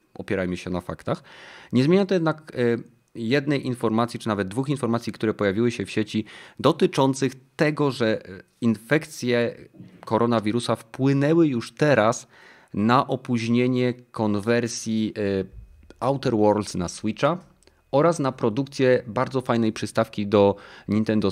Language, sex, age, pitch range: Polish, male, 30-49, 100-125 Hz